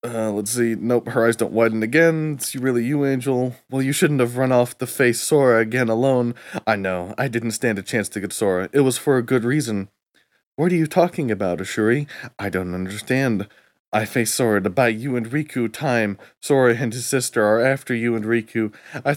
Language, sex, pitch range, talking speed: English, male, 105-130 Hz, 215 wpm